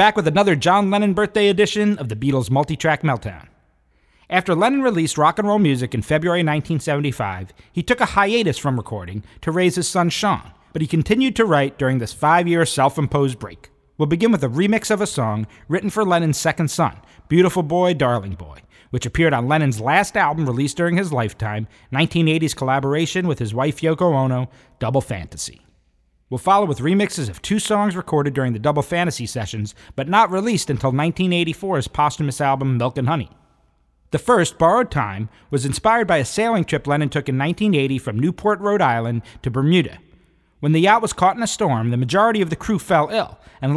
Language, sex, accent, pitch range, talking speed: English, male, American, 125-180 Hz, 195 wpm